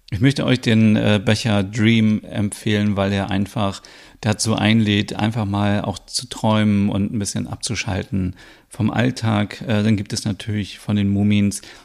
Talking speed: 150 wpm